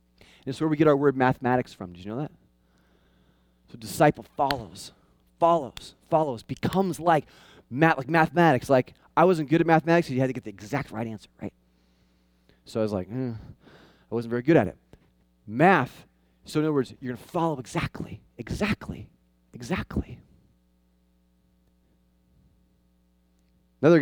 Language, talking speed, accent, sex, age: English, 155 wpm, American, male, 30-49